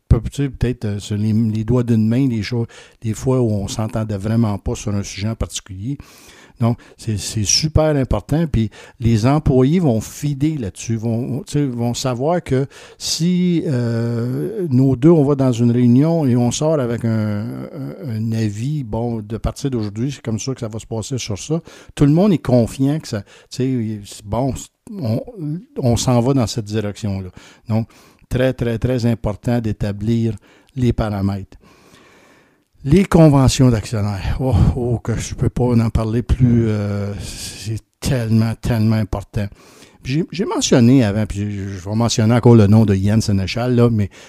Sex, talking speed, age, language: male, 165 wpm, 60-79, French